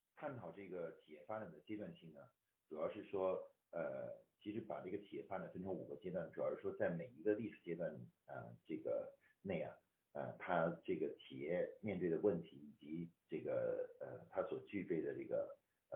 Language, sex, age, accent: Chinese, male, 50-69, native